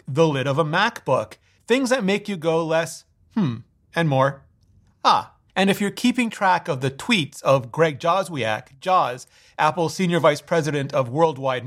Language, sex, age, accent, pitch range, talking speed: English, male, 30-49, American, 135-185 Hz, 170 wpm